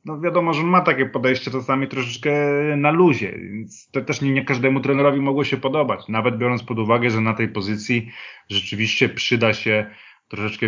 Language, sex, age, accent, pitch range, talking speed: Polish, male, 30-49, native, 110-140 Hz, 180 wpm